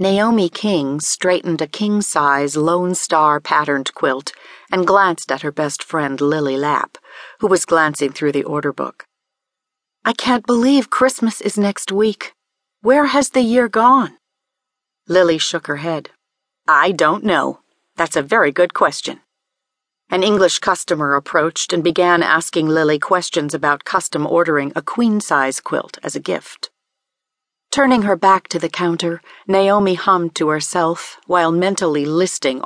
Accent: American